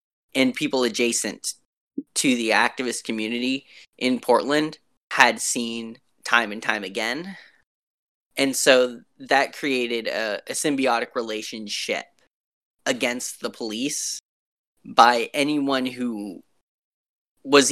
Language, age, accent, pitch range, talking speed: English, 10-29, American, 120-150 Hz, 100 wpm